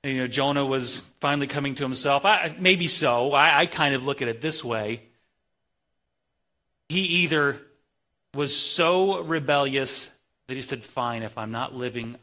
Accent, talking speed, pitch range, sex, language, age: American, 160 wpm, 115-165 Hz, male, English, 30-49